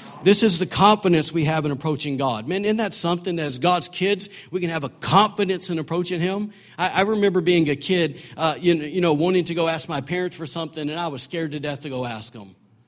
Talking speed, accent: 245 wpm, American